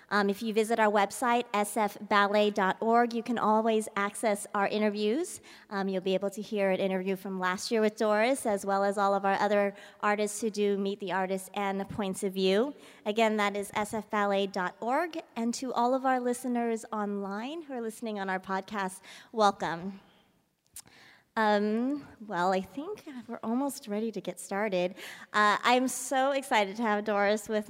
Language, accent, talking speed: English, American, 175 wpm